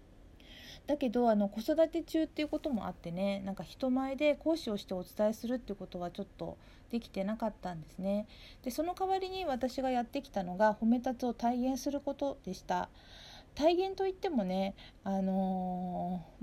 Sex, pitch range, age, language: female, 195-270 Hz, 40-59, Japanese